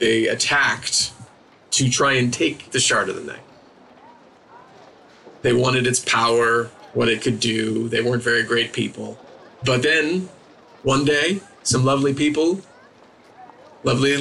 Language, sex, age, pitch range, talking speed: English, male, 30-49, 125-165 Hz, 135 wpm